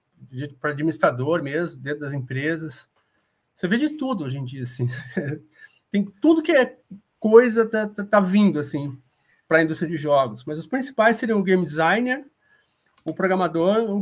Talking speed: 165 wpm